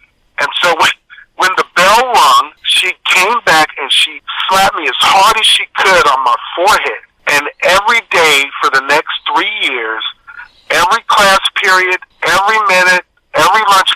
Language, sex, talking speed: English, male, 160 wpm